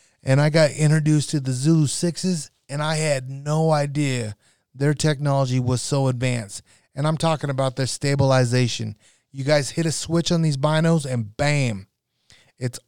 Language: English